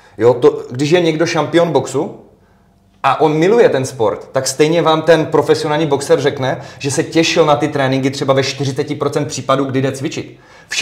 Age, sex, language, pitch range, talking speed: 30-49, male, Czech, 135-170 Hz, 185 wpm